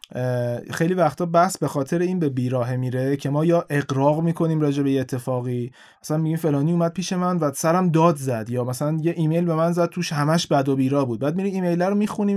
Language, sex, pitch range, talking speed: Persian, male, 135-170 Hz, 220 wpm